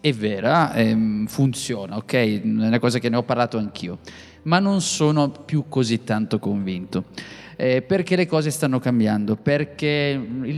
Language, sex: Italian, male